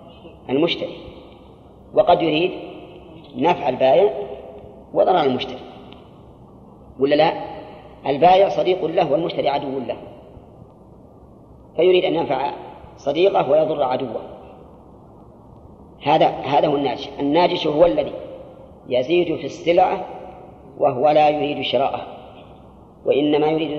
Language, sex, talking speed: Arabic, female, 95 wpm